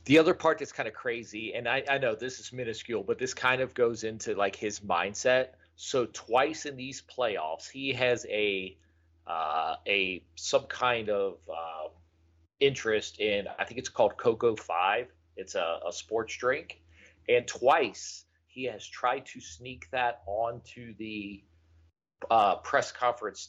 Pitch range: 95-135 Hz